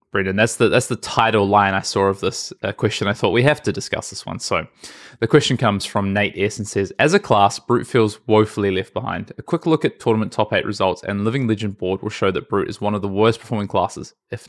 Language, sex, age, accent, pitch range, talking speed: English, male, 20-39, Australian, 100-120 Hz, 255 wpm